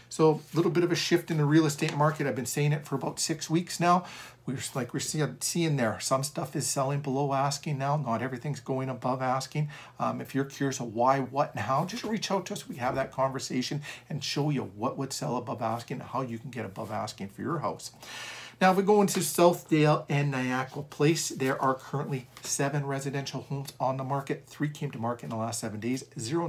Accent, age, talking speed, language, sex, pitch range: American, 50-69, 230 wpm, English, male, 125-150 Hz